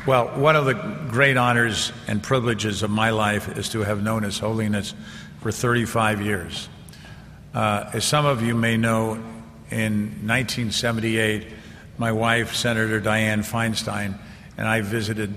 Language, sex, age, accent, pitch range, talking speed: English, male, 50-69, American, 105-115 Hz, 145 wpm